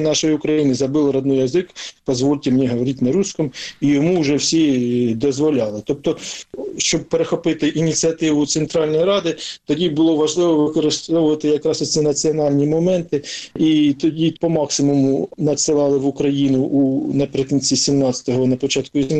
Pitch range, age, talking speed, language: 125-155 Hz, 40-59, 130 wpm, Ukrainian